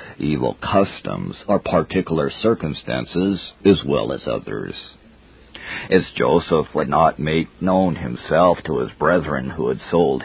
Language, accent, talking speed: English, American, 130 wpm